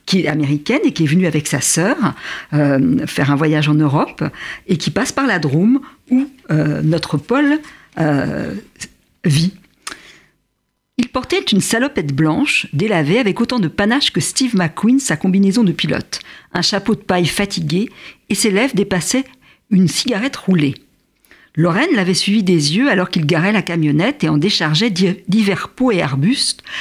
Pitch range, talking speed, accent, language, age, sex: 160-240 Hz, 165 wpm, French, French, 50-69, female